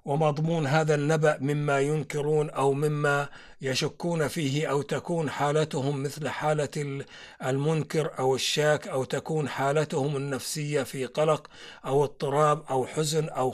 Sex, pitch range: male, 140-150 Hz